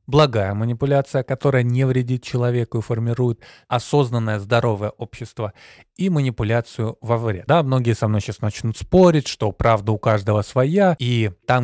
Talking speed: 150 wpm